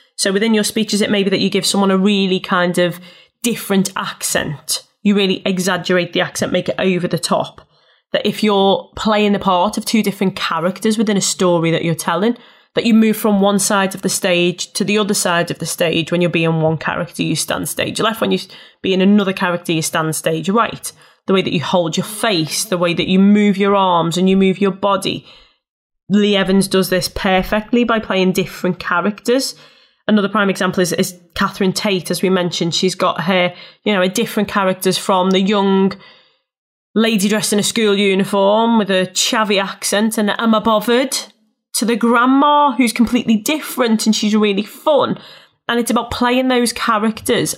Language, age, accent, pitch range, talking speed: English, 20-39, British, 185-220 Hz, 195 wpm